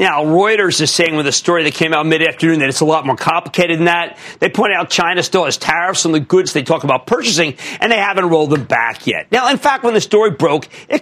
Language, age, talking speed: English, 50-69, 260 wpm